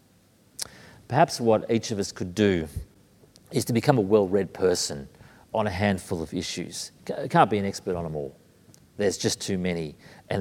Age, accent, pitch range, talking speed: 40-59, Australian, 95-125 Hz, 175 wpm